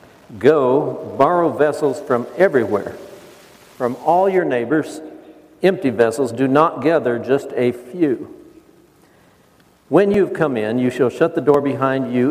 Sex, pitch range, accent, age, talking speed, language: male, 125-155 Hz, American, 60-79, 140 wpm, English